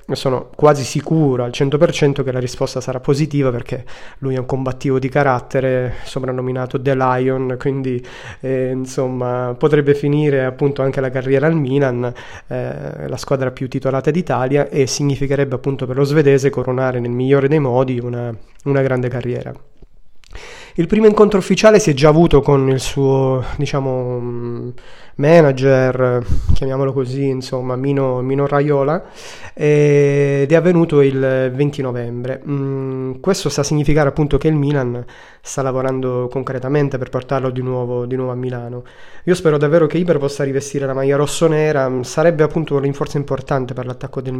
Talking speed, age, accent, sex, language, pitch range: 155 wpm, 20-39, native, male, Italian, 130-145 Hz